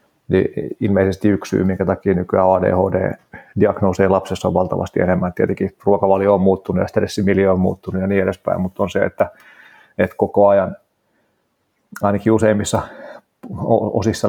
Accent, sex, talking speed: native, male, 140 wpm